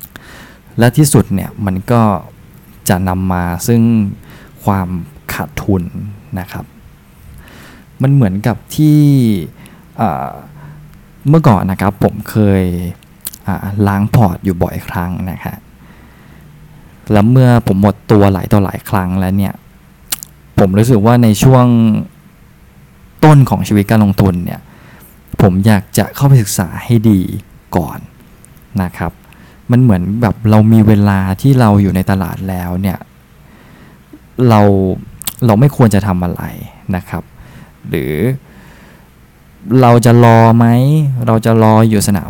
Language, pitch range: Thai, 95-120 Hz